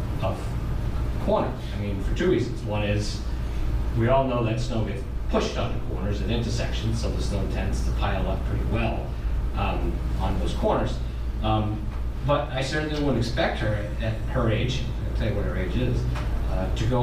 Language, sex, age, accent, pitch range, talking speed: English, male, 40-59, American, 105-125 Hz, 195 wpm